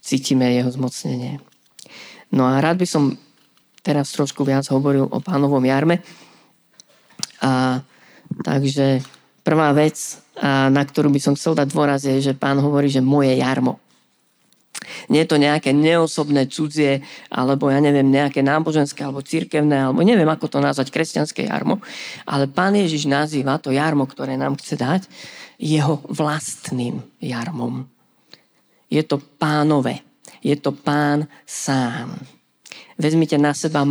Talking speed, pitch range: 135 wpm, 140-165 Hz